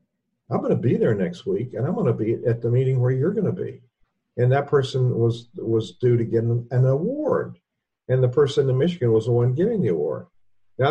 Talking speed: 230 wpm